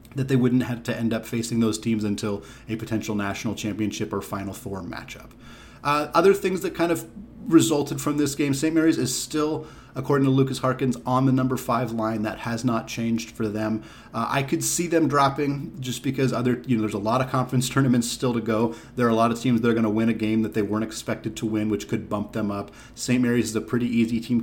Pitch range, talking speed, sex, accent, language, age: 110-135 Hz, 245 wpm, male, American, English, 30-49